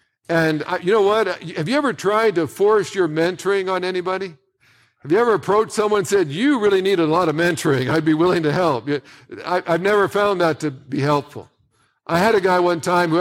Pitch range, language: 165-225 Hz, English